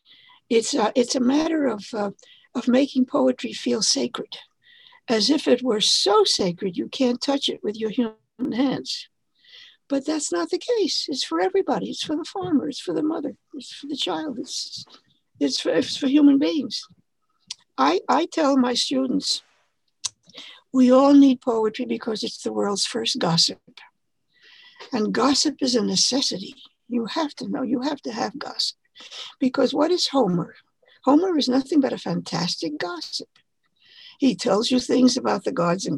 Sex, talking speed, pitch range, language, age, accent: female, 165 wpm, 235-315 Hz, English, 60-79, American